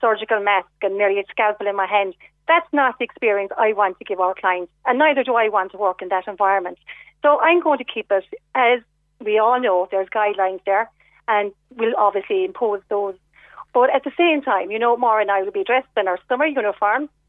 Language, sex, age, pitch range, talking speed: English, female, 40-59, 200-255 Hz, 220 wpm